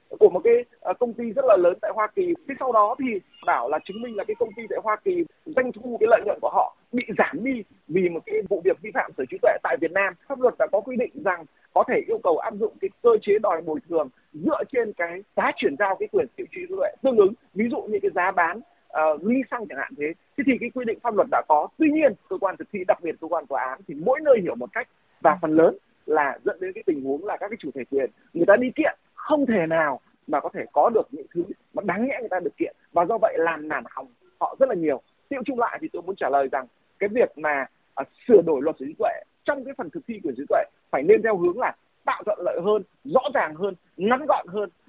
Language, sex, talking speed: Vietnamese, male, 275 wpm